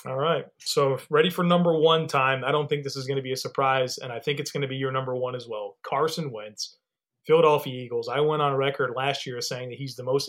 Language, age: English, 30-49